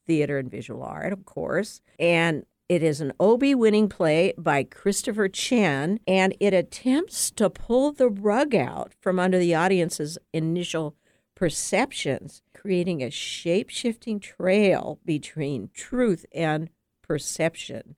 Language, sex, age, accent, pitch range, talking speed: English, female, 60-79, American, 160-205 Hz, 125 wpm